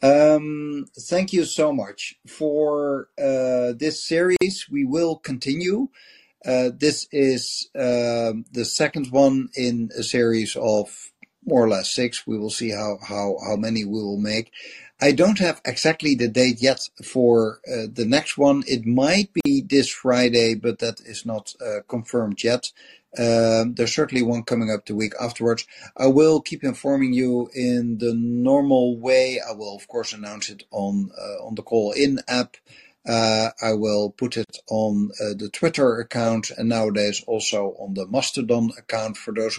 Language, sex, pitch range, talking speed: English, male, 110-130 Hz, 165 wpm